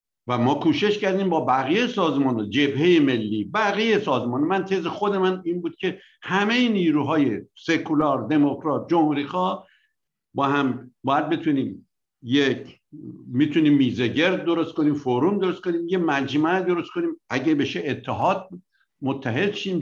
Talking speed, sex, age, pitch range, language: 135 wpm, male, 60-79, 135-200 Hz, Persian